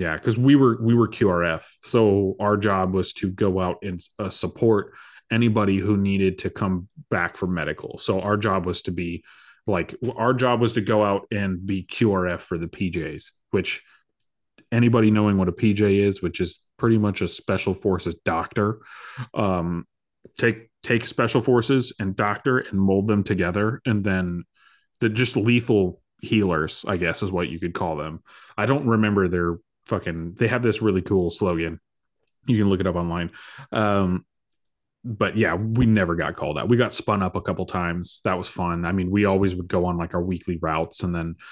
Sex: male